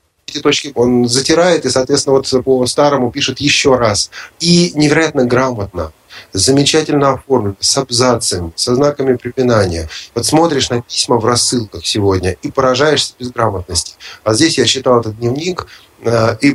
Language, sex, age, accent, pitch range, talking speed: Russian, male, 30-49, native, 95-125 Hz, 150 wpm